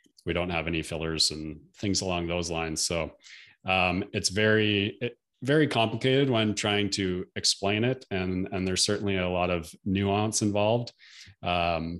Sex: male